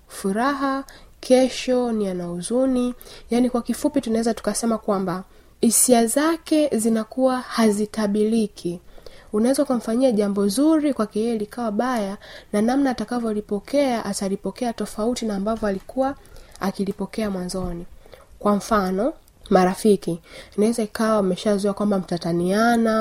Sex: female